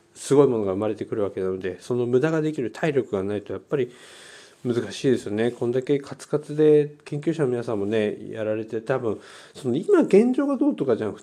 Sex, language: male, Japanese